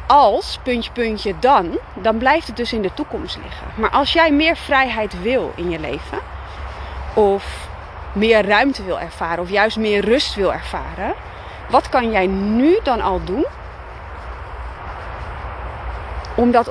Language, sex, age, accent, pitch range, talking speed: Dutch, female, 30-49, Dutch, 175-240 Hz, 145 wpm